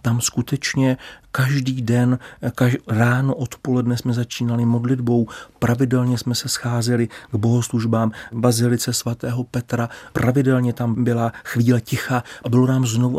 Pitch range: 115-130 Hz